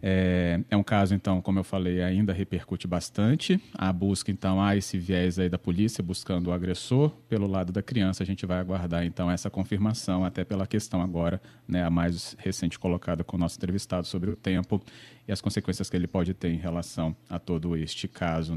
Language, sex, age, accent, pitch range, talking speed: Portuguese, male, 40-59, Brazilian, 90-105 Hz, 200 wpm